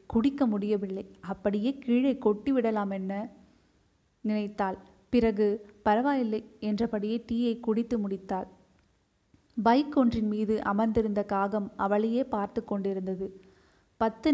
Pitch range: 200-235 Hz